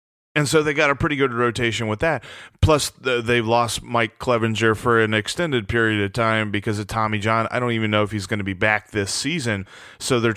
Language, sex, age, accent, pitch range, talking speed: English, male, 30-49, American, 110-140 Hz, 225 wpm